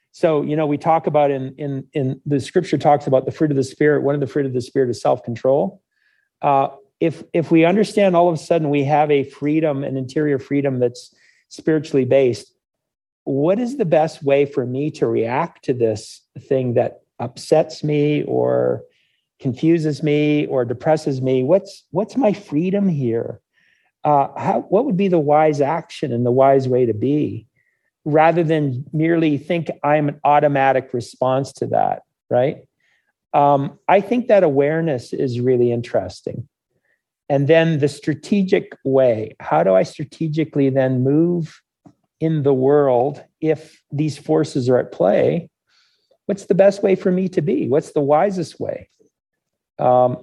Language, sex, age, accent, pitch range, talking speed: English, male, 50-69, American, 135-160 Hz, 165 wpm